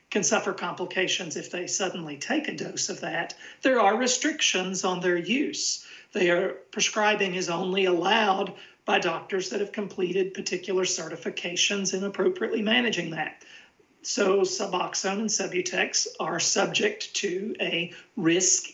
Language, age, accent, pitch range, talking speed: English, 40-59, American, 180-225 Hz, 140 wpm